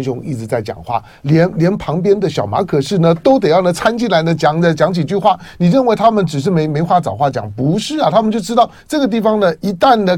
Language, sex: Chinese, male